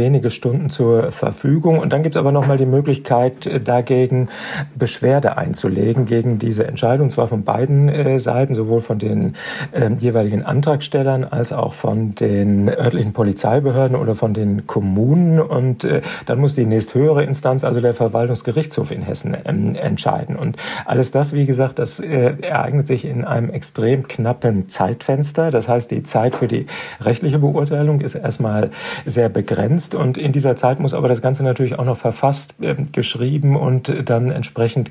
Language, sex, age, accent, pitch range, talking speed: German, male, 40-59, German, 120-145 Hz, 170 wpm